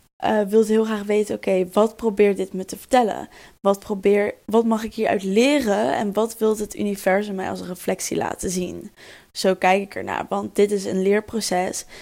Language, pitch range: Dutch, 195-225 Hz